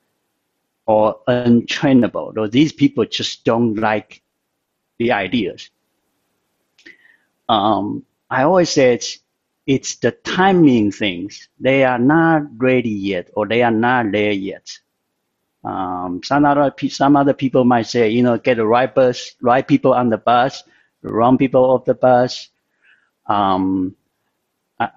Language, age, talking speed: English, 60-79, 135 wpm